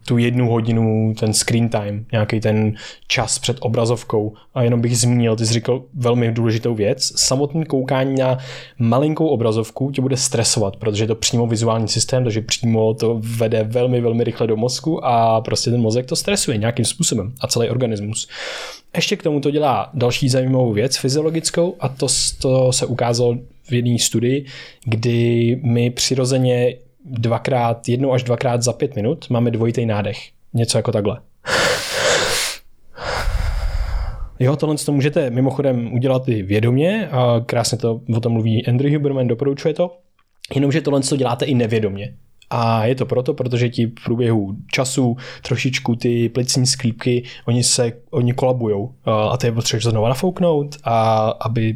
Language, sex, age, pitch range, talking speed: Czech, male, 20-39, 115-135 Hz, 160 wpm